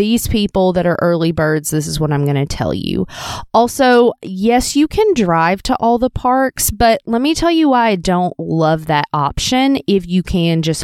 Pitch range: 155-205 Hz